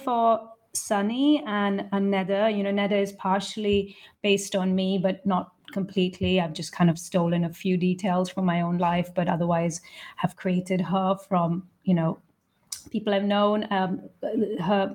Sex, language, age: female, English, 30-49